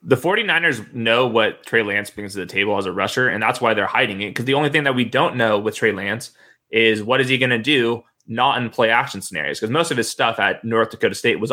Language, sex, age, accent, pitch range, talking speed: English, male, 20-39, American, 115-145 Hz, 265 wpm